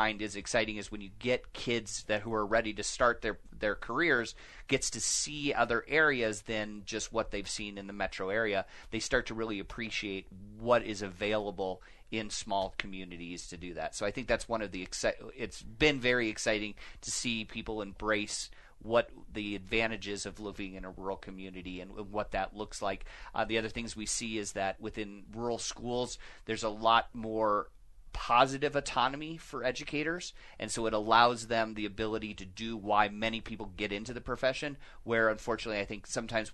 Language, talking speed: English, 185 wpm